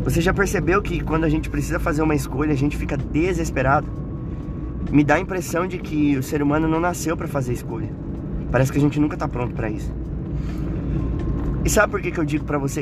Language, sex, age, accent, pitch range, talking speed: Portuguese, male, 20-39, Brazilian, 135-155 Hz, 220 wpm